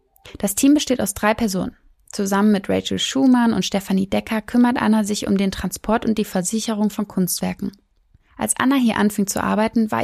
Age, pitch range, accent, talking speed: 20-39, 195-235 Hz, German, 185 wpm